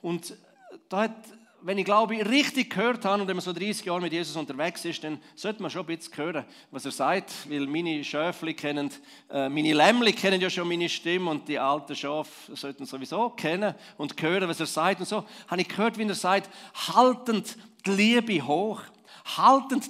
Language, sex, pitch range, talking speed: German, male, 180-235 Hz, 195 wpm